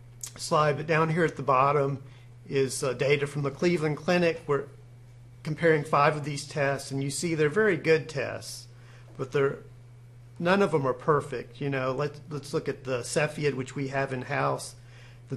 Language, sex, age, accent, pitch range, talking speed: English, male, 40-59, American, 120-150 Hz, 185 wpm